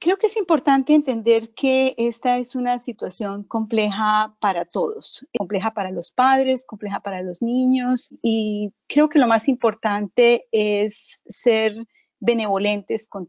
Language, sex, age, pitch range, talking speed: English, female, 40-59, 195-250 Hz, 145 wpm